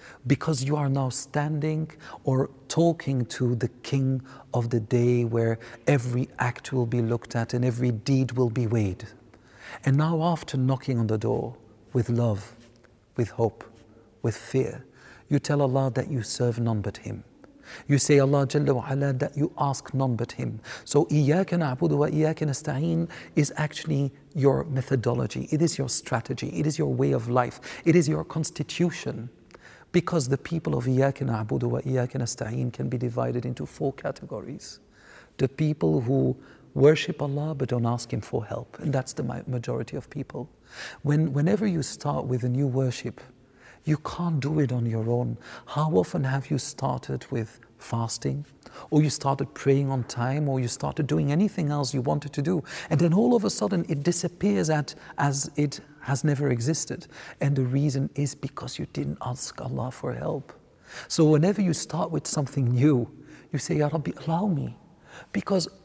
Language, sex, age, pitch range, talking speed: English, male, 50-69, 120-150 Hz, 170 wpm